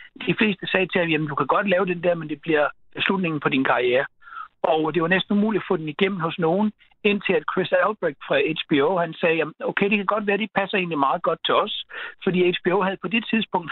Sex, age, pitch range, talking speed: male, 60-79, 165-205 Hz, 260 wpm